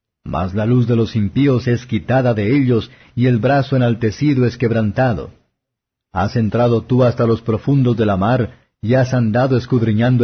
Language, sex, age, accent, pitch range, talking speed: Spanish, male, 50-69, Mexican, 115-135 Hz, 170 wpm